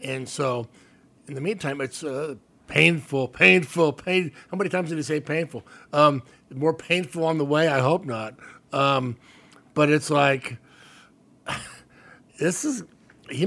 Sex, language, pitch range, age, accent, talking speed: male, English, 125-180 Hz, 60-79, American, 145 wpm